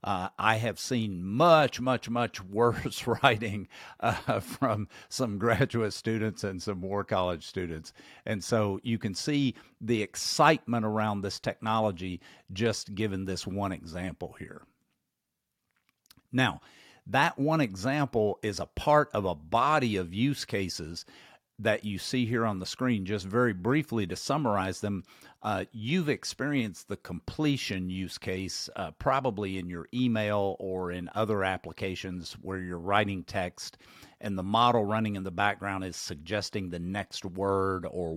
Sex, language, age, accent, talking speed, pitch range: male, English, 50-69, American, 150 wpm, 95-120 Hz